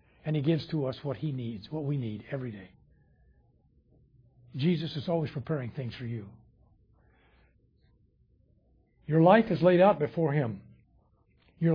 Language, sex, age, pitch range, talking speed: English, male, 60-79, 125-170 Hz, 145 wpm